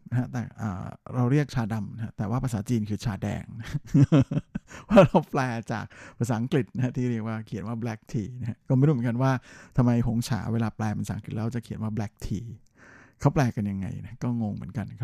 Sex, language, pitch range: male, Thai, 110-130 Hz